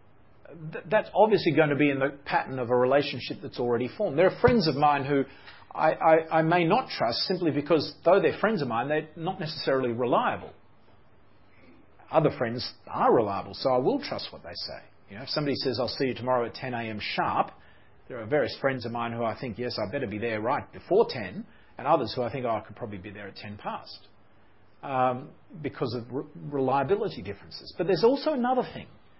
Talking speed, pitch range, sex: 210 wpm, 110-170 Hz, male